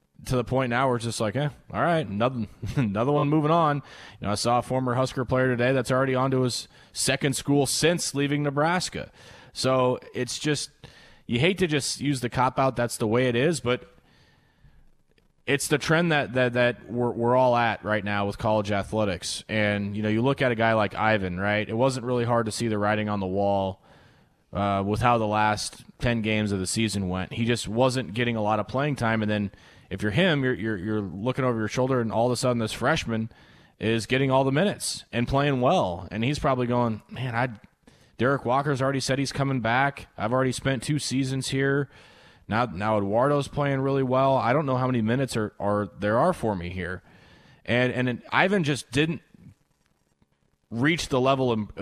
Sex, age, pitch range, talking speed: male, 20-39, 105-135 Hz, 210 wpm